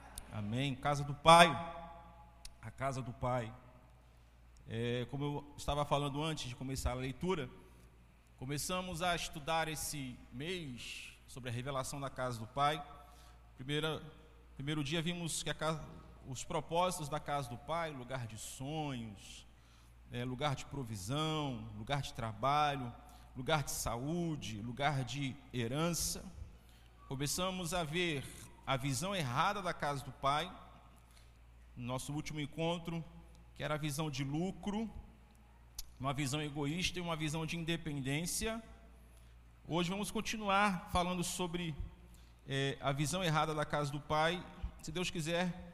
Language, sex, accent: Portuguese, male, Brazilian